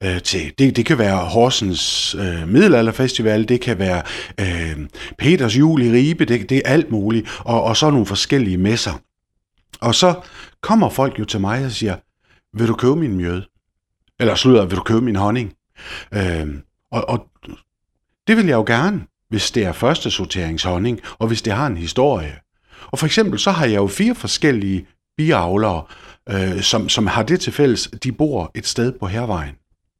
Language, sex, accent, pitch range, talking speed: Danish, male, native, 95-145 Hz, 180 wpm